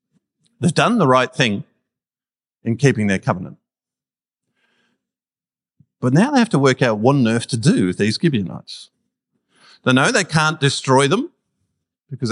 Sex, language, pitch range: male, English, 125-165 Hz